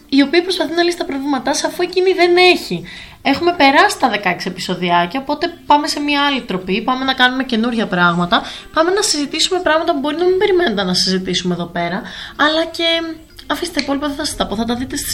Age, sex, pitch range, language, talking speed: 20-39, female, 200-300 Hz, Greek, 210 wpm